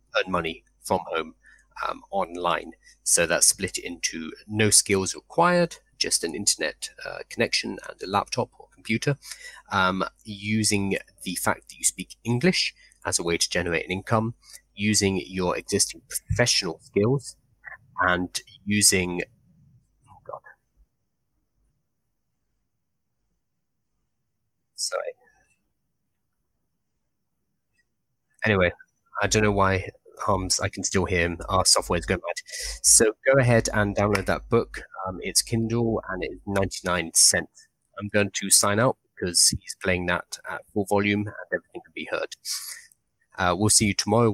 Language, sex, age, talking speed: English, male, 30-49, 135 wpm